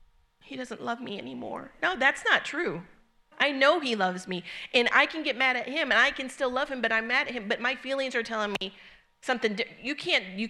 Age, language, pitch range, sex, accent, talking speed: 40-59, English, 195-245 Hz, female, American, 240 wpm